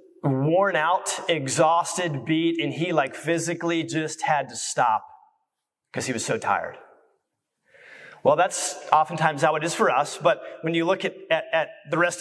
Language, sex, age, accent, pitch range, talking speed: English, male, 30-49, American, 160-200 Hz, 165 wpm